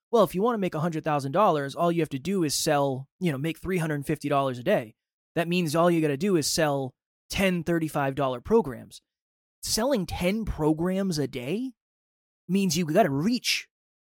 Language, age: English, 20-39